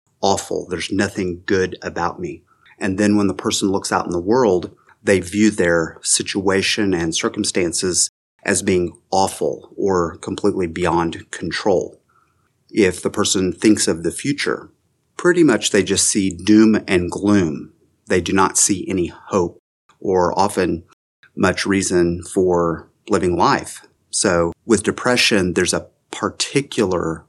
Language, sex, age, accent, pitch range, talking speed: English, male, 30-49, American, 90-110 Hz, 140 wpm